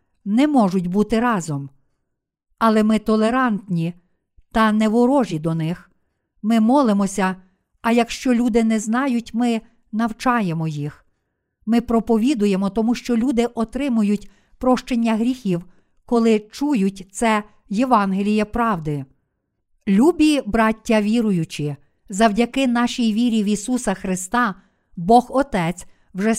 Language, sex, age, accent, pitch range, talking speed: Ukrainian, female, 50-69, native, 195-240 Hz, 105 wpm